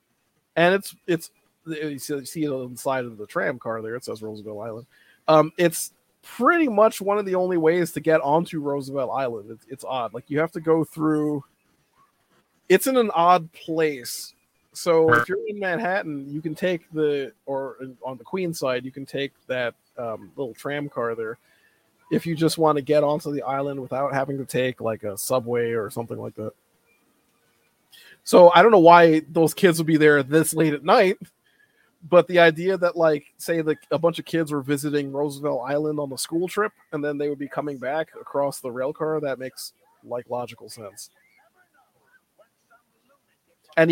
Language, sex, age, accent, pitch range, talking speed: English, male, 30-49, American, 140-170 Hz, 190 wpm